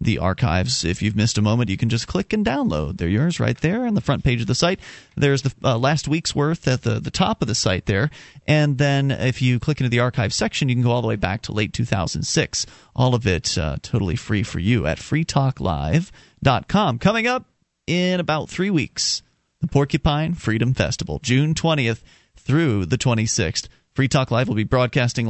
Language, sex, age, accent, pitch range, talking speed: English, male, 40-59, American, 115-150 Hz, 205 wpm